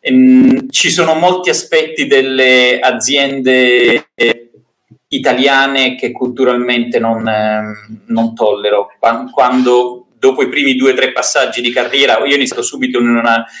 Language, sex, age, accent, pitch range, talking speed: Italian, male, 30-49, native, 120-160 Hz, 130 wpm